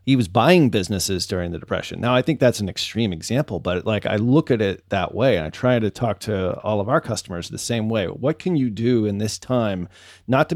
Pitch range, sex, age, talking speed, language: 115-145 Hz, male, 30-49, 250 wpm, English